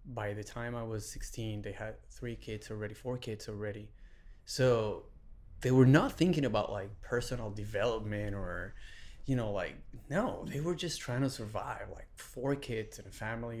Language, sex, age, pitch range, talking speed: English, male, 30-49, 105-130 Hz, 175 wpm